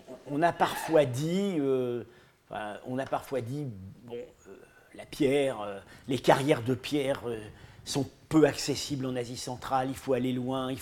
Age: 50-69